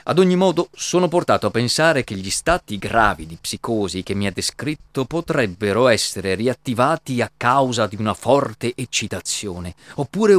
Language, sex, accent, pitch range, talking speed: Italian, male, native, 100-140 Hz, 155 wpm